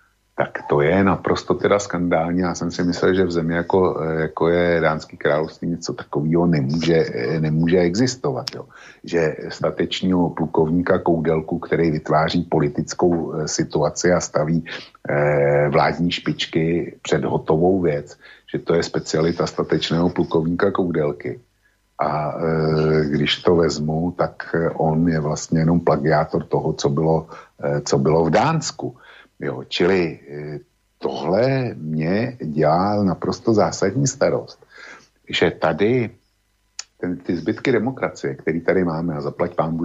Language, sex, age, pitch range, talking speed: Slovak, male, 60-79, 80-95 Hz, 130 wpm